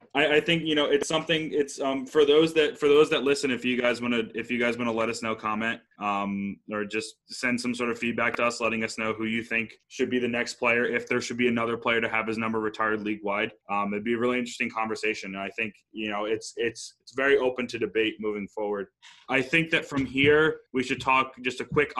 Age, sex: 20-39, male